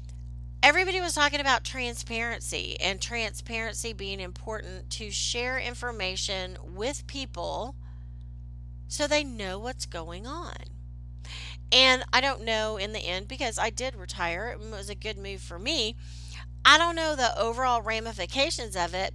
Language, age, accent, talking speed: English, 40-59, American, 145 wpm